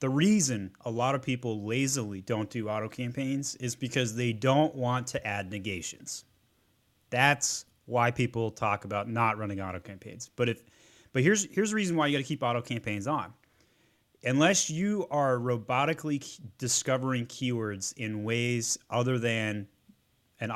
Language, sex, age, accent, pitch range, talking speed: English, male, 30-49, American, 115-145 Hz, 160 wpm